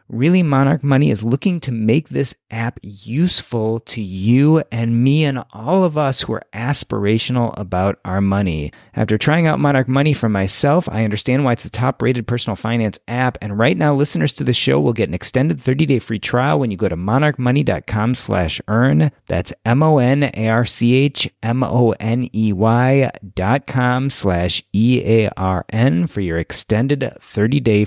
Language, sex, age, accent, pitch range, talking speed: English, male, 30-49, American, 115-170 Hz, 155 wpm